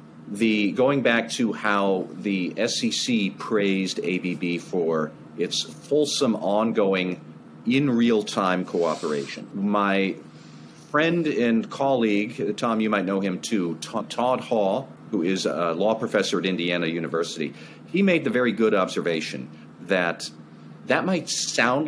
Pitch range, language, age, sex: 85-115 Hz, English, 40-59, male